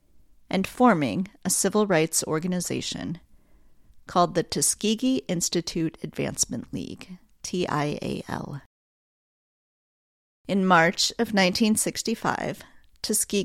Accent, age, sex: American, 40-59, female